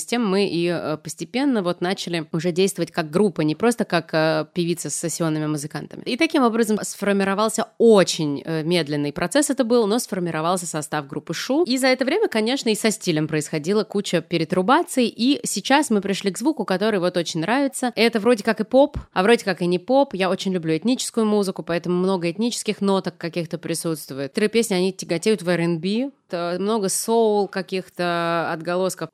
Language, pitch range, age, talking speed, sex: Russian, 170-215 Hz, 20-39, 175 wpm, female